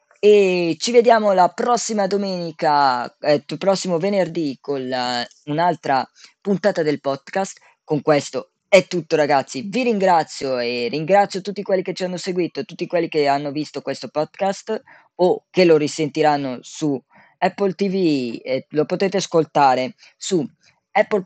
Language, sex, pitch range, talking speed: Italian, female, 145-195 Hz, 140 wpm